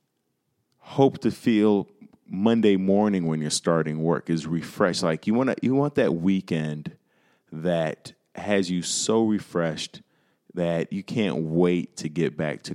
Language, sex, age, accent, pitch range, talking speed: English, male, 30-49, American, 80-90 Hz, 145 wpm